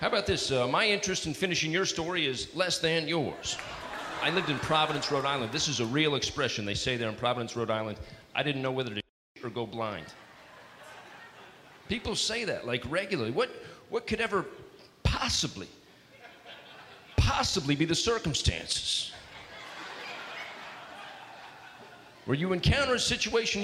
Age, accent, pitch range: 40-59, American, 130-190 Hz